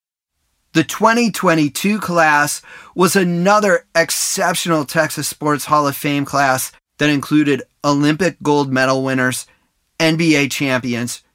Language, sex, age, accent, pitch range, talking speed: English, male, 30-49, American, 135-180 Hz, 105 wpm